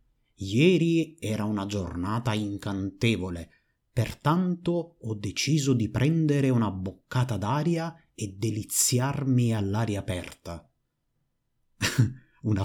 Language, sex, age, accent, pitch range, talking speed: Italian, male, 30-49, native, 100-145 Hz, 85 wpm